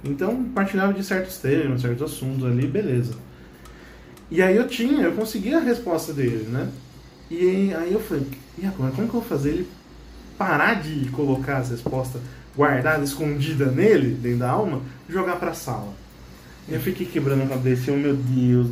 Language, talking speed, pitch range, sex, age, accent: Portuguese, 185 wpm, 125-180 Hz, male, 20-39, Brazilian